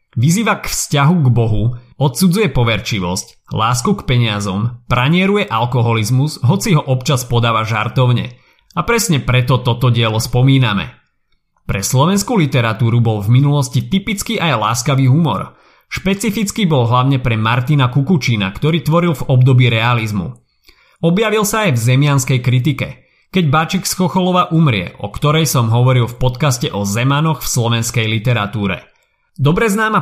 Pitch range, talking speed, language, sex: 120-160 Hz, 135 wpm, Slovak, male